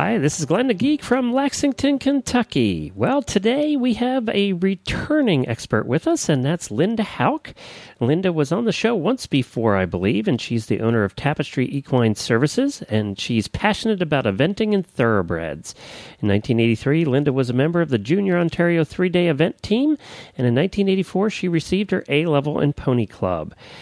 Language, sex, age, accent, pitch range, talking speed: English, male, 40-59, American, 115-185 Hz, 175 wpm